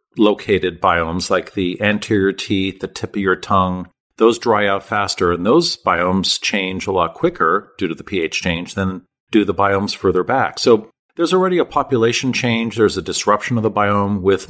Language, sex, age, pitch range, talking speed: English, male, 50-69, 95-115 Hz, 190 wpm